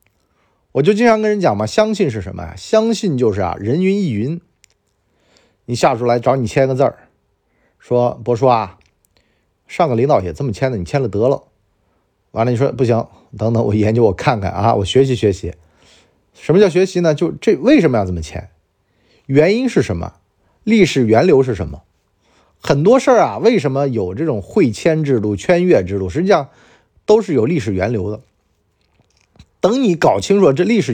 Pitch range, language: 100-160 Hz, Chinese